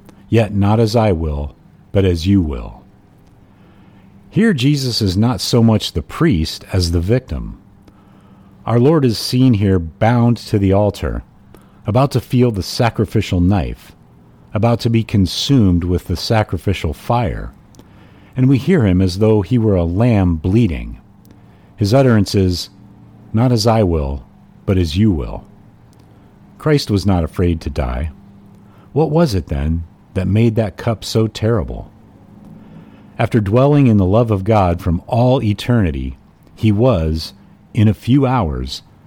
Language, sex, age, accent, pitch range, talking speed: English, male, 50-69, American, 90-115 Hz, 150 wpm